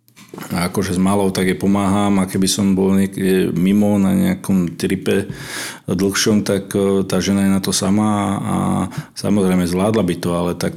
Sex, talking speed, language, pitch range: male, 175 wpm, Slovak, 95-105 Hz